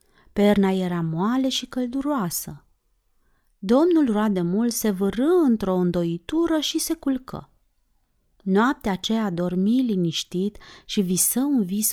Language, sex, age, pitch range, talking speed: Romanian, female, 30-49, 175-255 Hz, 110 wpm